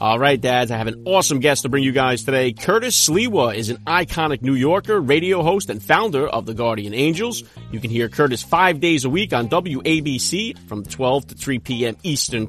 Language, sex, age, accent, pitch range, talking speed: English, male, 40-59, American, 130-175 Hz, 210 wpm